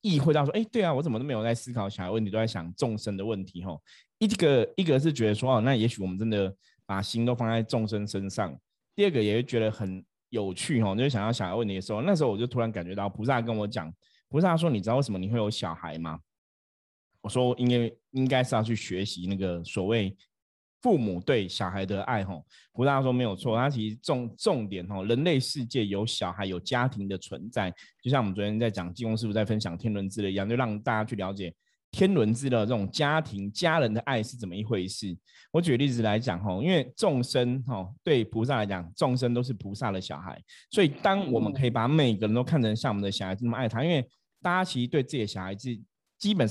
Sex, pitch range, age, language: male, 100-130 Hz, 20-39, Chinese